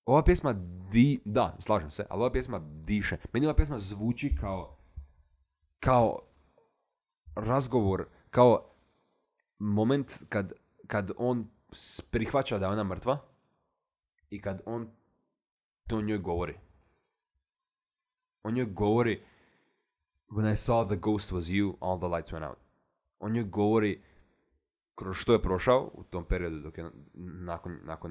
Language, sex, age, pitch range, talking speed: Croatian, male, 20-39, 90-115 Hz, 130 wpm